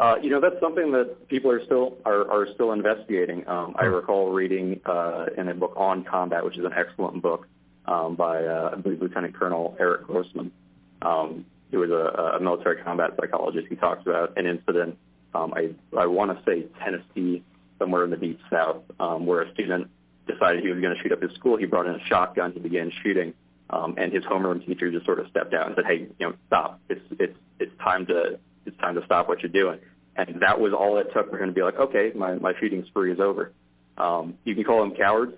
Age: 30-49